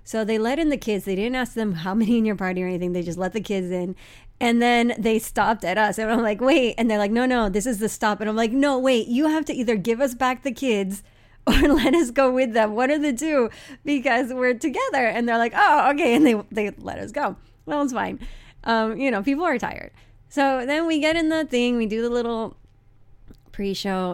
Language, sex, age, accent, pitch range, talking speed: English, female, 30-49, American, 205-295 Hz, 250 wpm